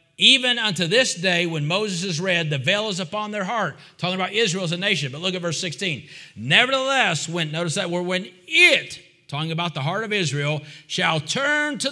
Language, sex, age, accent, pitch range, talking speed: English, male, 40-59, American, 150-215 Hz, 205 wpm